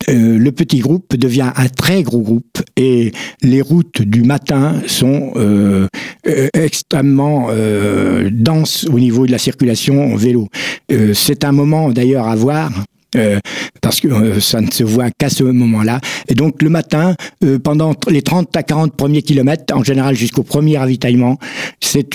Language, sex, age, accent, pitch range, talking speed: French, male, 60-79, French, 120-150 Hz, 170 wpm